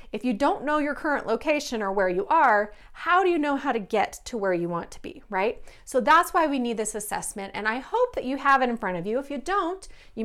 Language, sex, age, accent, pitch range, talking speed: English, female, 30-49, American, 205-295 Hz, 275 wpm